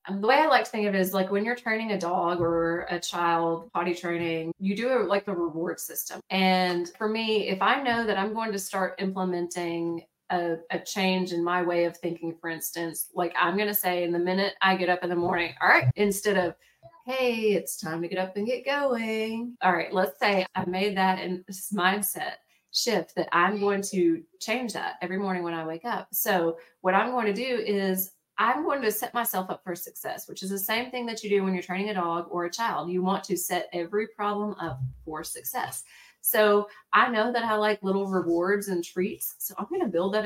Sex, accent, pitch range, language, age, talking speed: female, American, 175-210 Hz, English, 30-49, 235 wpm